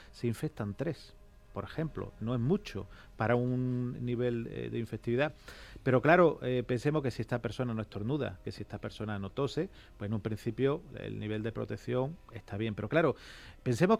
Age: 40-59